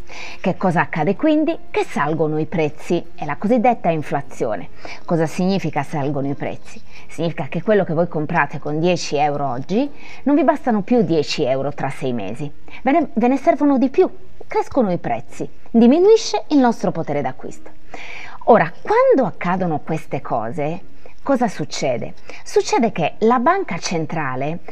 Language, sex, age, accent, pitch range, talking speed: Italian, female, 20-39, native, 155-255 Hz, 150 wpm